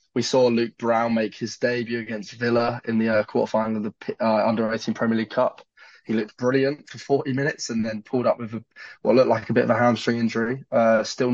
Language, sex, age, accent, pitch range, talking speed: English, male, 10-29, British, 110-120 Hz, 230 wpm